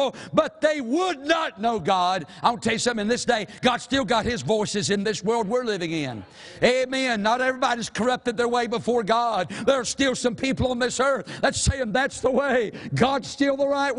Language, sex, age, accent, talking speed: English, male, 60-79, American, 210 wpm